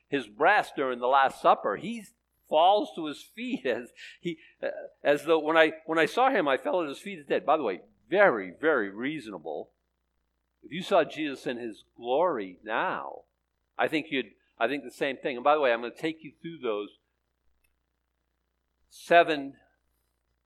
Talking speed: 180 wpm